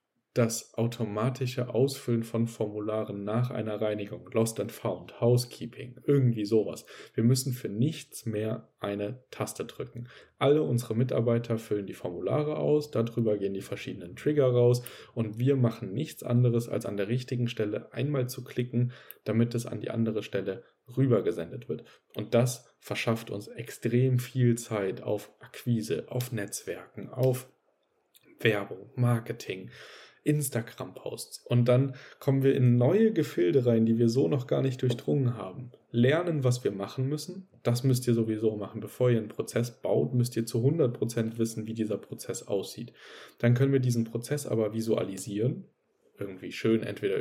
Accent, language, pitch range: German, German, 110-125 Hz